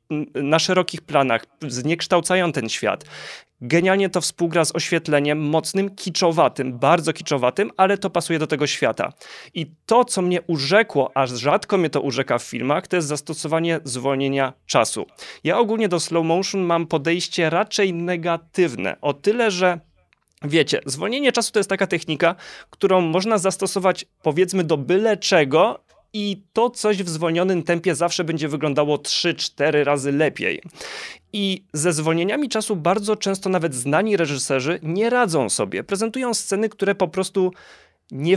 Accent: native